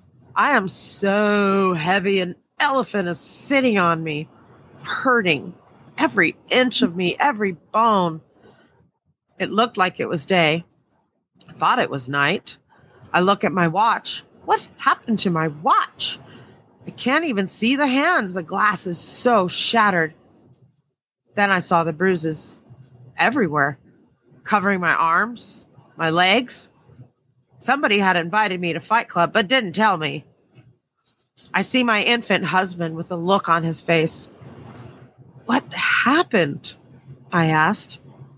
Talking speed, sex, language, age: 135 wpm, female, English, 40-59